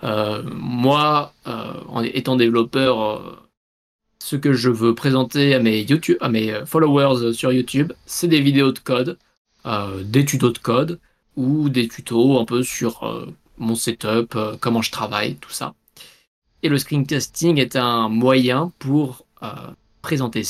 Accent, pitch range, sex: French, 115-140 Hz, male